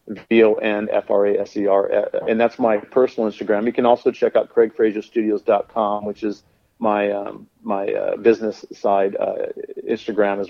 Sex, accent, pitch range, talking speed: male, American, 110-140 Hz, 175 wpm